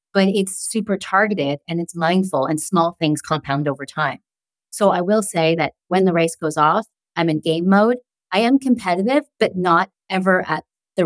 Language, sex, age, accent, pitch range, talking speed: English, female, 30-49, American, 155-195 Hz, 190 wpm